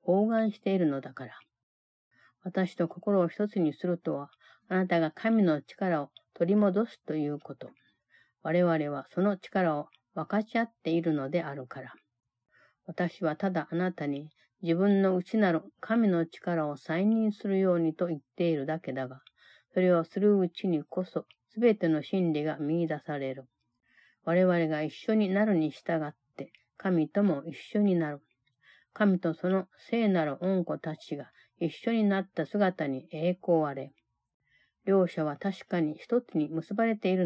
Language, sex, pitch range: Japanese, female, 155-195 Hz